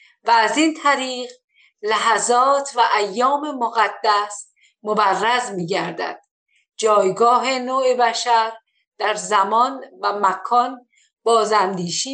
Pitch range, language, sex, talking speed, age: 200-255 Hz, Persian, female, 95 wpm, 50-69